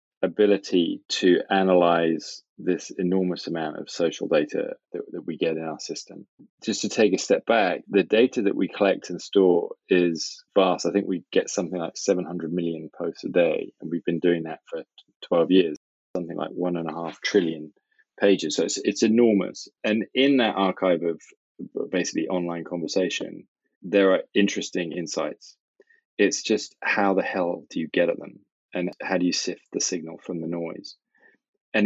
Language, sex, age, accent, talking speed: English, male, 20-39, British, 180 wpm